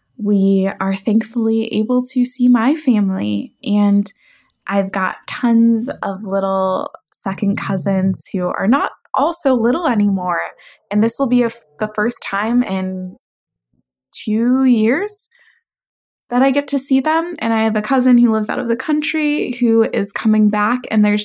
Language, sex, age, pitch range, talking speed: English, female, 20-39, 200-250 Hz, 160 wpm